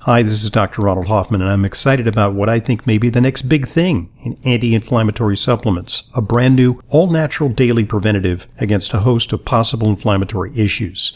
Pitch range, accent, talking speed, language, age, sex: 105-135 Hz, American, 190 wpm, English, 50-69, male